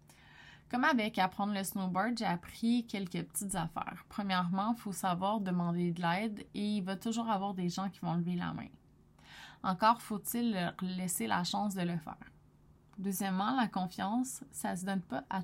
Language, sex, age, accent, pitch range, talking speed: French, female, 20-39, Canadian, 180-215 Hz, 185 wpm